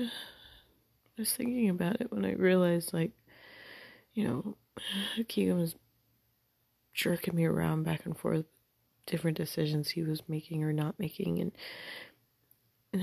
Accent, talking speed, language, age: American, 135 wpm, English, 30-49